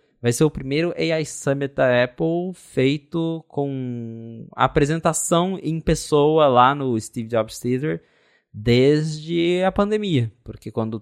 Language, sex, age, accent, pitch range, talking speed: Portuguese, male, 20-39, Brazilian, 110-145 Hz, 125 wpm